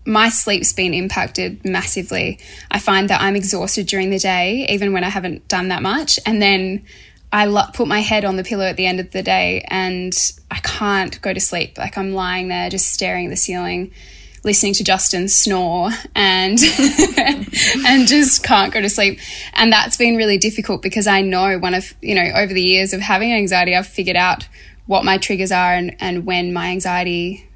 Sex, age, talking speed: female, 10-29, 200 wpm